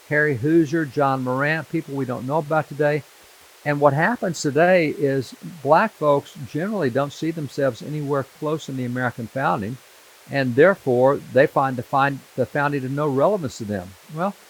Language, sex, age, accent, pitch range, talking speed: English, male, 60-79, American, 130-160 Hz, 160 wpm